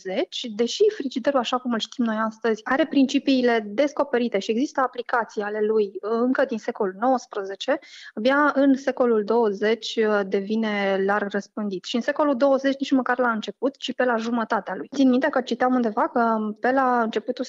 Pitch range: 205-245 Hz